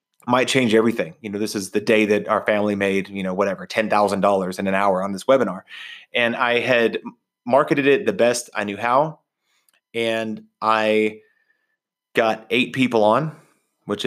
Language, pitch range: English, 105-120 Hz